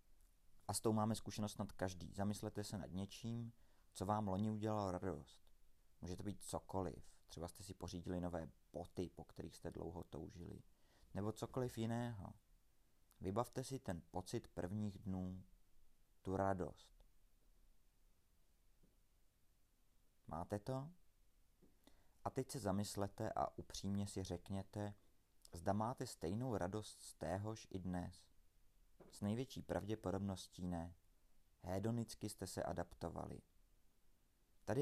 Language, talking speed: Czech, 120 wpm